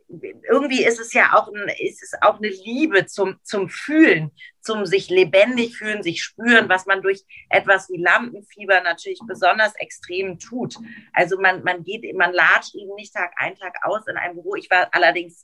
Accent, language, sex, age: German, German, female, 30-49